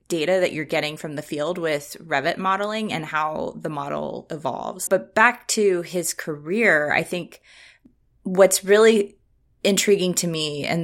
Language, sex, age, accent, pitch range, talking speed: English, female, 20-39, American, 160-195 Hz, 155 wpm